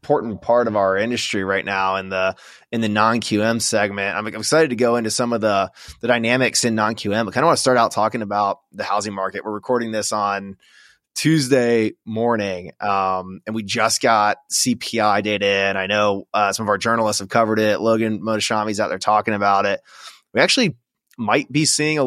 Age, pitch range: 20-39, 100-120 Hz